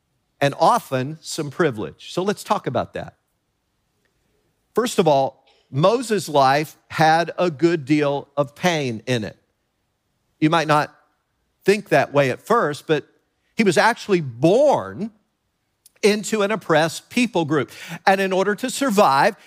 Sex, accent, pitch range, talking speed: male, American, 140-200 Hz, 140 wpm